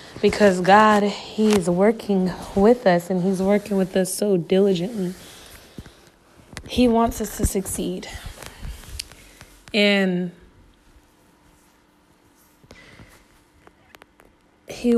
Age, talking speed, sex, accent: 20-39, 80 wpm, female, American